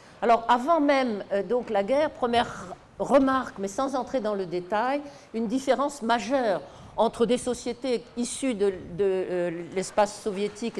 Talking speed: 145 wpm